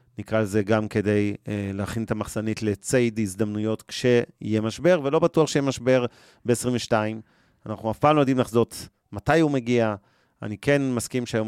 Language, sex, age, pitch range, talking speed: Hebrew, male, 30-49, 110-130 Hz, 155 wpm